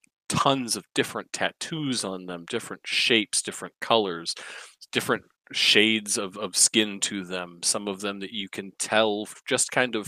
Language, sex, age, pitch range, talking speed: English, male, 40-59, 95-105 Hz, 160 wpm